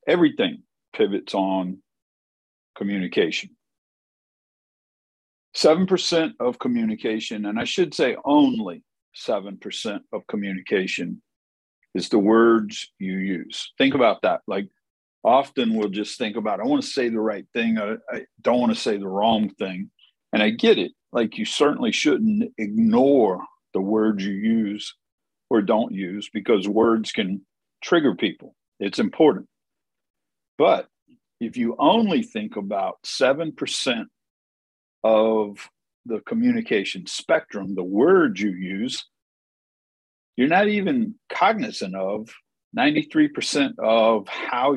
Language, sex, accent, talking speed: English, male, American, 120 wpm